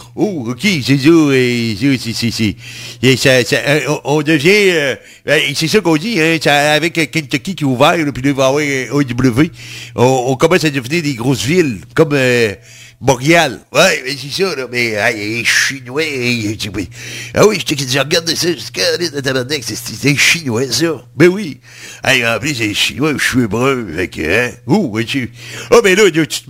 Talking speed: 200 wpm